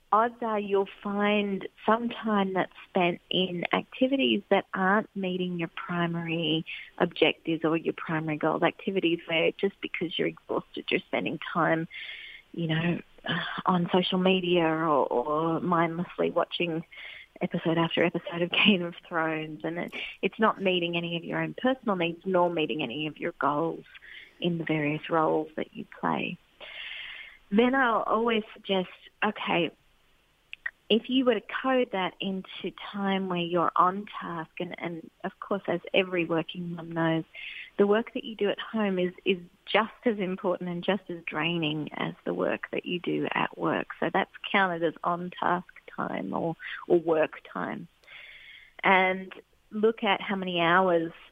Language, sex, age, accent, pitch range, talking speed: English, female, 30-49, Australian, 165-200 Hz, 155 wpm